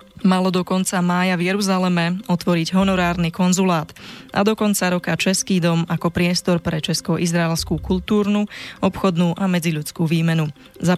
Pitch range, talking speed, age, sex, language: 170-185 Hz, 135 wpm, 20-39, female, Slovak